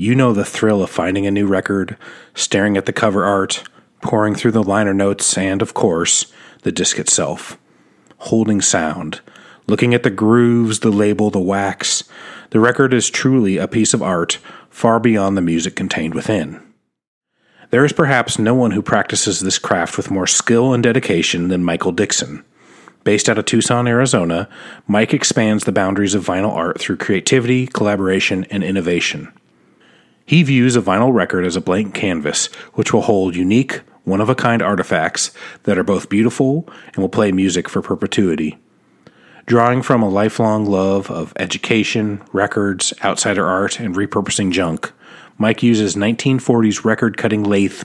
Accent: American